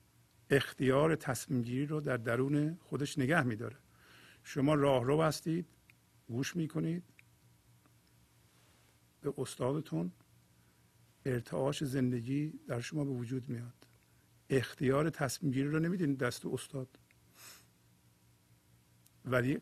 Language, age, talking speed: English, 50-69, 90 wpm